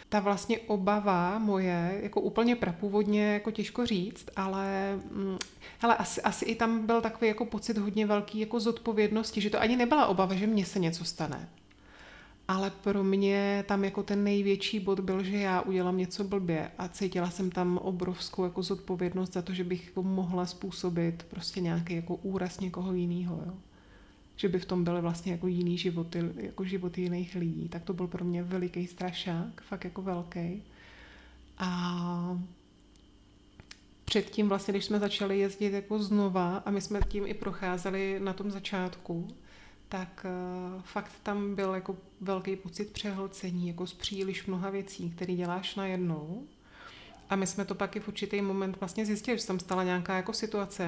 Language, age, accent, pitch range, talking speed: Czech, 30-49, native, 180-205 Hz, 165 wpm